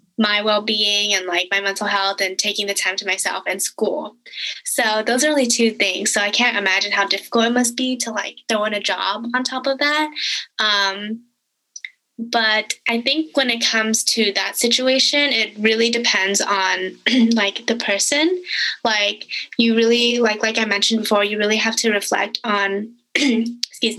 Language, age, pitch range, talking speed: English, 10-29, 195-230 Hz, 185 wpm